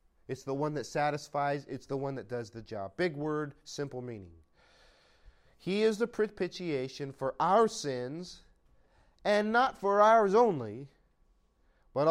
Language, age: English, 30-49